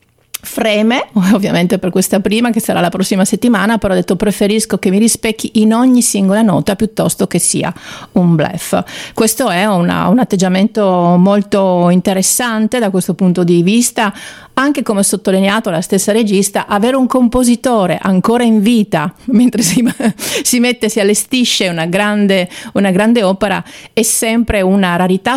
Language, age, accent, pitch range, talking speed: Italian, 40-59, native, 180-230 Hz, 155 wpm